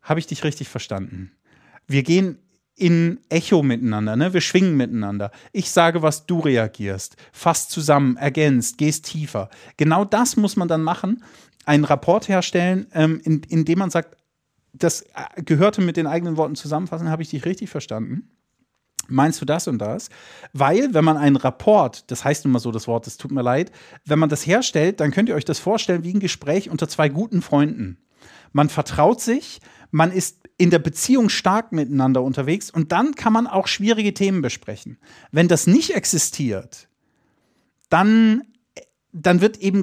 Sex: male